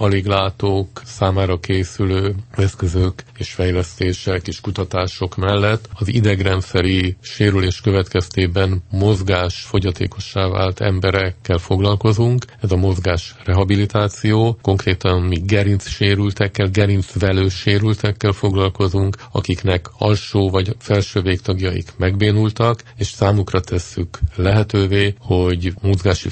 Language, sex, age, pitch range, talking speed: Hungarian, male, 50-69, 95-110 Hz, 90 wpm